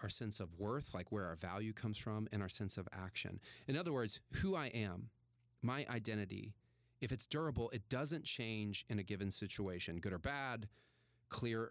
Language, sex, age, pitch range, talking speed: English, male, 40-59, 100-130 Hz, 190 wpm